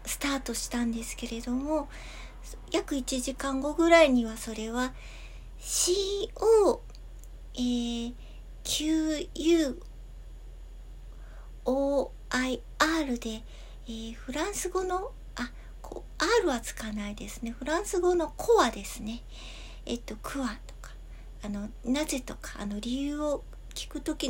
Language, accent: Japanese, native